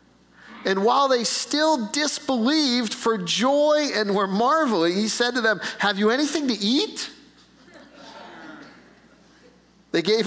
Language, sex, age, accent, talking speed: English, male, 40-59, American, 125 wpm